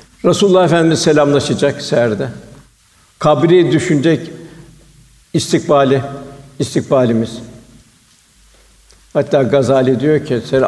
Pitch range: 130-150 Hz